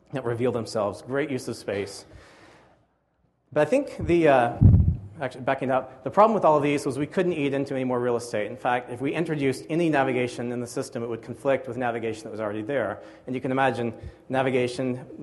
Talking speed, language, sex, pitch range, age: 215 wpm, English, male, 120-145 Hz, 40-59